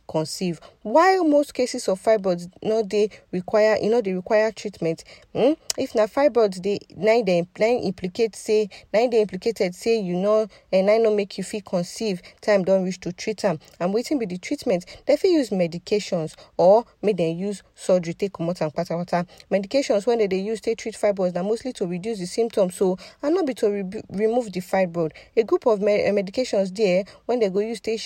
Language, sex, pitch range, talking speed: English, female, 180-225 Hz, 200 wpm